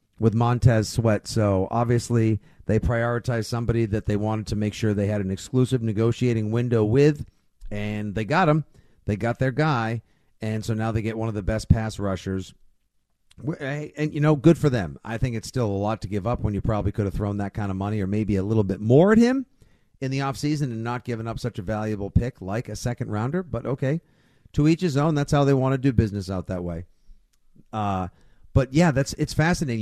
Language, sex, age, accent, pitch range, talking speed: English, male, 40-59, American, 105-140 Hz, 220 wpm